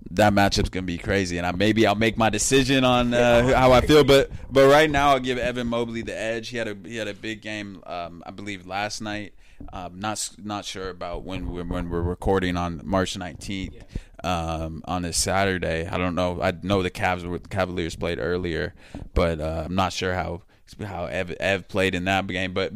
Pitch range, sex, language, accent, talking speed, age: 90-110 Hz, male, English, American, 220 wpm, 20-39